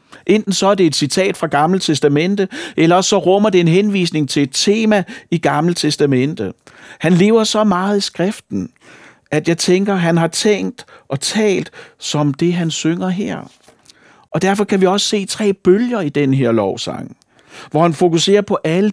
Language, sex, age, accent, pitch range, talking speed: Danish, male, 60-79, native, 155-200 Hz, 180 wpm